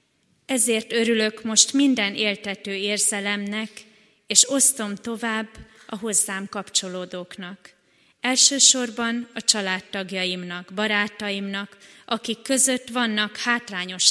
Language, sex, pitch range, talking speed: Hungarian, female, 195-235 Hz, 85 wpm